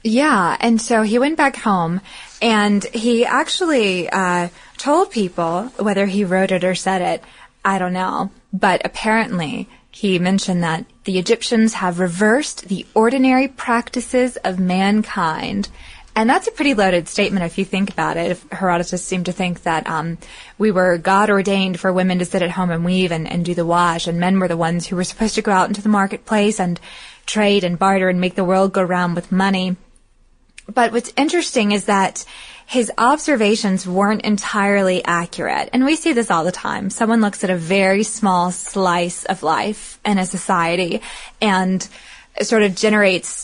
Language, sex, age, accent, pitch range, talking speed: English, female, 20-39, American, 180-220 Hz, 180 wpm